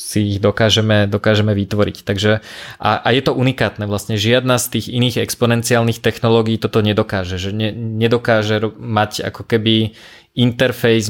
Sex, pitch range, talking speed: male, 105-115 Hz, 145 wpm